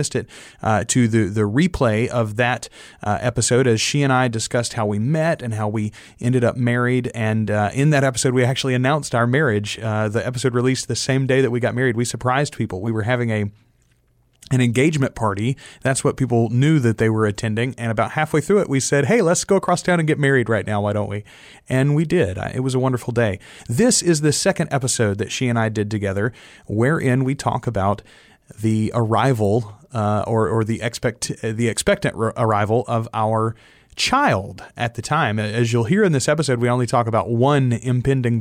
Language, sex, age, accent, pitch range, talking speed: English, male, 30-49, American, 110-135 Hz, 210 wpm